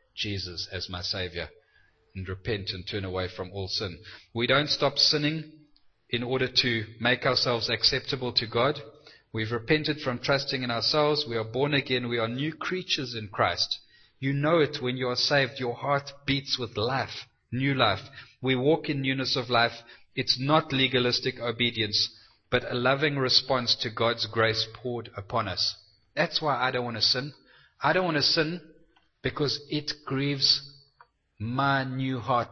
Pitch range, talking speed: 105-135 Hz, 170 wpm